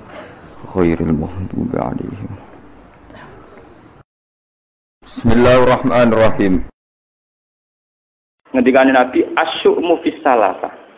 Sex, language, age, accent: male, Indonesian, 50-69, native